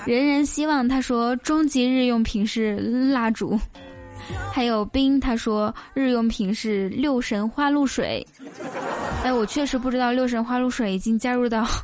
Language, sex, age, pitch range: Chinese, female, 10-29, 235-295 Hz